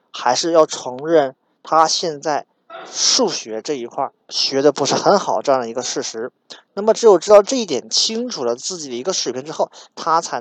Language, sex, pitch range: Chinese, male, 135-195 Hz